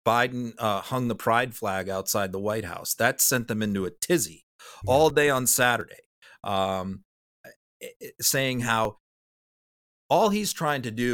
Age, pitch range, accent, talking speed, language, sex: 40-59, 110-145 Hz, American, 150 wpm, English, male